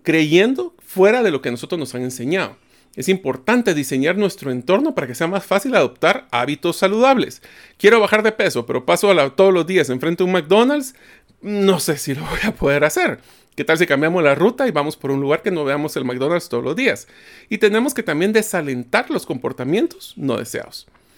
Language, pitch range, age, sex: Spanish, 140-210 Hz, 40-59, male